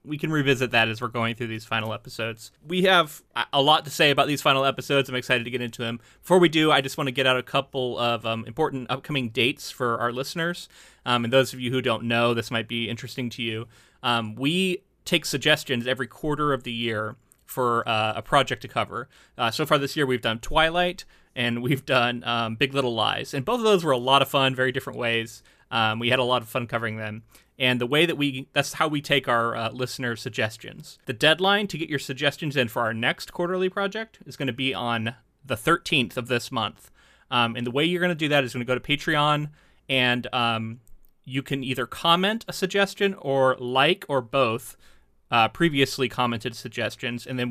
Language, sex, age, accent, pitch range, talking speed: English, male, 30-49, American, 120-150 Hz, 225 wpm